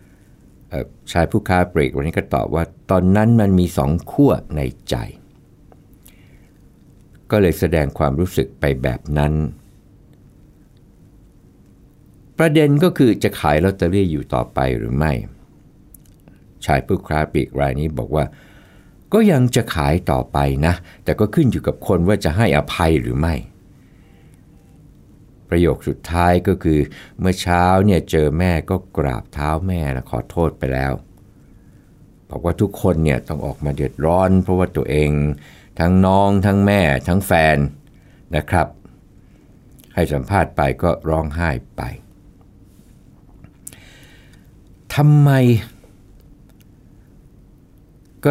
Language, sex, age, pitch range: Thai, male, 60-79, 75-100 Hz